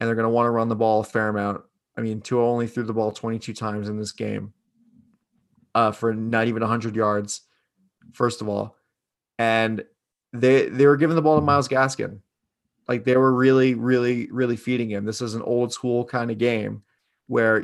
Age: 20-39